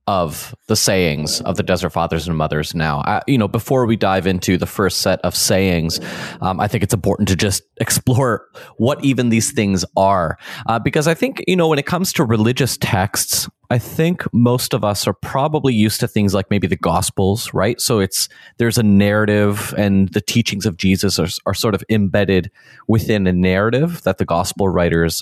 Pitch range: 95-120 Hz